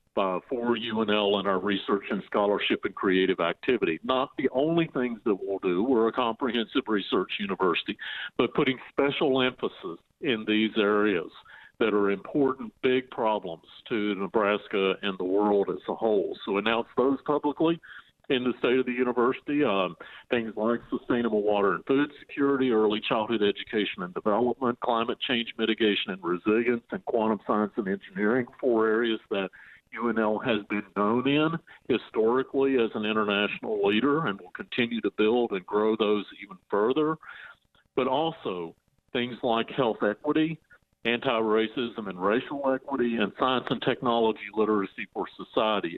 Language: English